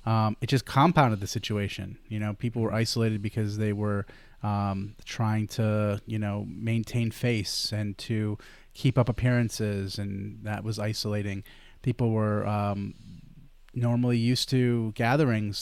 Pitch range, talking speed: 105-125 Hz, 140 wpm